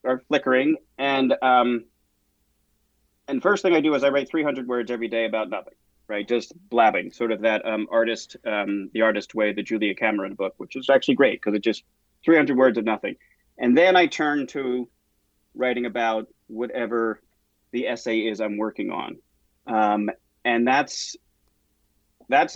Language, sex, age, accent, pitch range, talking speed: English, male, 30-49, American, 105-130 Hz, 170 wpm